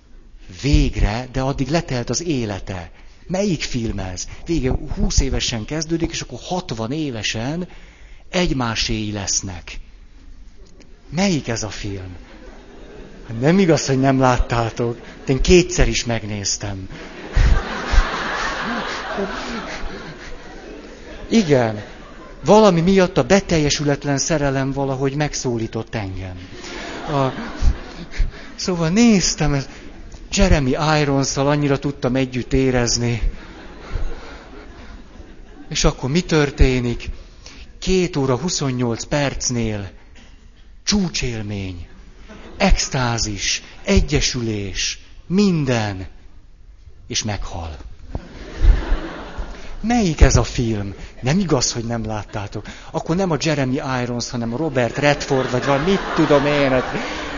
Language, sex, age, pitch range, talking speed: Hungarian, male, 60-79, 110-150 Hz, 95 wpm